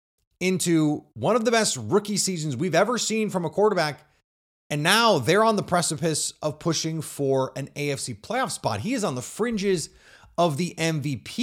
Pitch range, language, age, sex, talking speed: 120-185 Hz, English, 30-49, male, 180 wpm